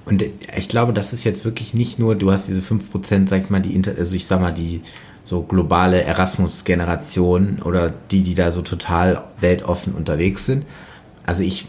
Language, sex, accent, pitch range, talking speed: German, male, German, 90-105 Hz, 190 wpm